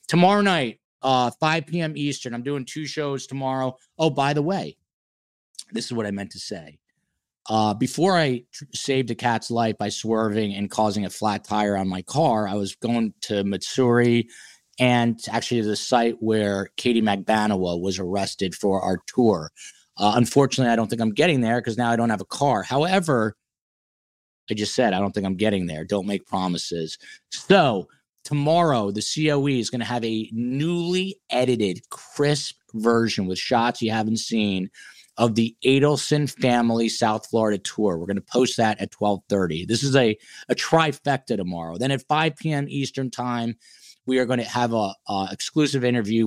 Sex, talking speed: male, 180 wpm